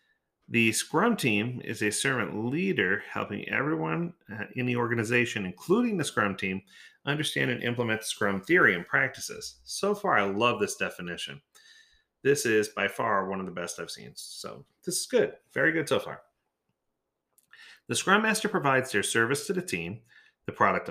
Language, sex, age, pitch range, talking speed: English, male, 30-49, 105-170 Hz, 170 wpm